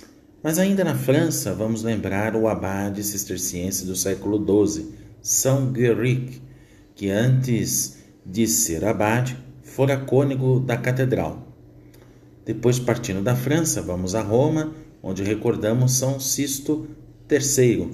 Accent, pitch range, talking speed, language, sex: Brazilian, 95-125 Hz, 115 wpm, Portuguese, male